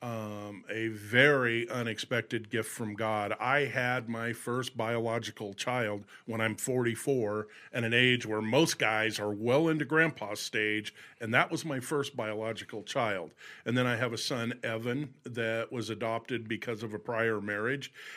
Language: English